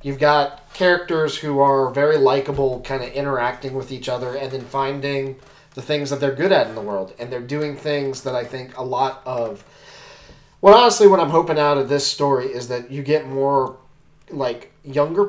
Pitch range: 125-150 Hz